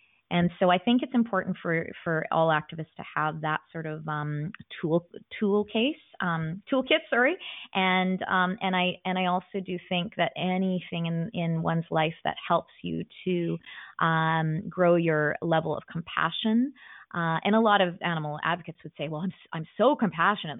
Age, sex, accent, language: 20-39, female, American, English